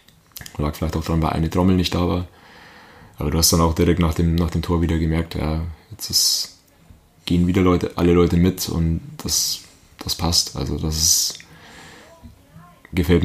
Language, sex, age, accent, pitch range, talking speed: German, male, 20-39, German, 80-90 Hz, 180 wpm